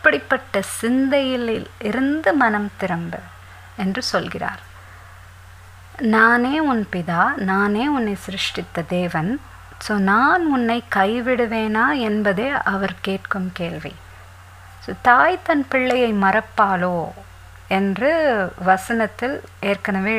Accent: native